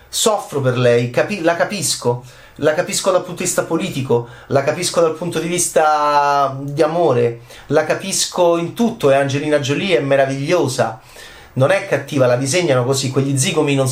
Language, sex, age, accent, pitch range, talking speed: Italian, male, 30-49, native, 125-165 Hz, 170 wpm